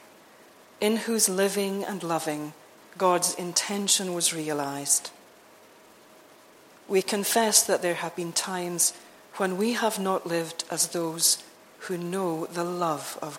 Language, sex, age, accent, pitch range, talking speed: English, female, 40-59, British, 160-195 Hz, 125 wpm